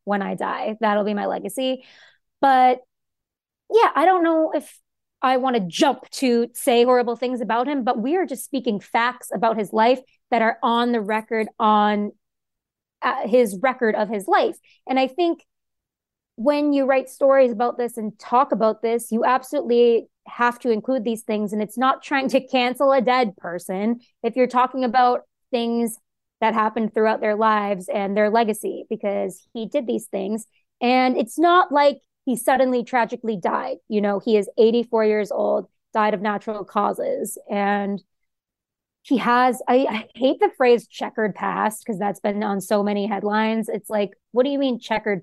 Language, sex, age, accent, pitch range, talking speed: English, female, 20-39, American, 210-255 Hz, 180 wpm